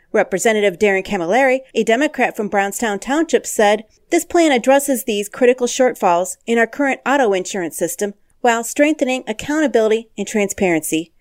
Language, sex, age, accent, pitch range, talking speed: English, female, 40-59, American, 200-260 Hz, 140 wpm